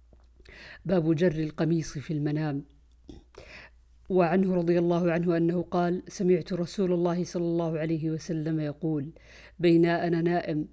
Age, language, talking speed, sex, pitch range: 50-69, Arabic, 115 wpm, female, 160-180 Hz